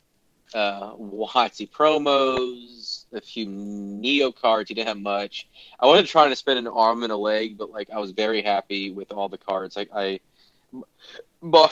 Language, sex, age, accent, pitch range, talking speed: English, male, 30-49, American, 100-120 Hz, 180 wpm